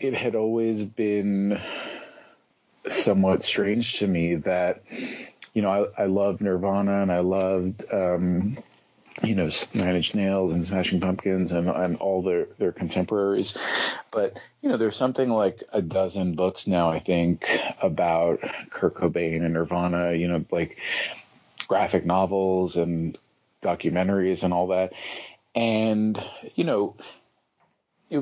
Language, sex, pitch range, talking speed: English, male, 90-105 Hz, 135 wpm